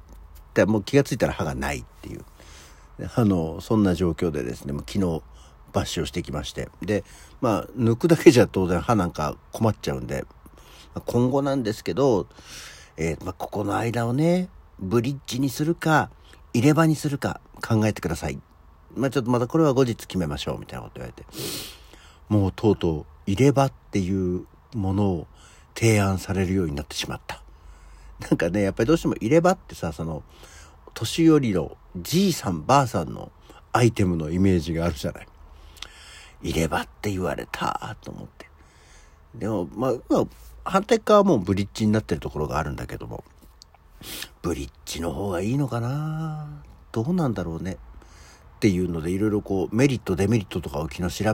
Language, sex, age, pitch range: Japanese, male, 60-79, 75-120 Hz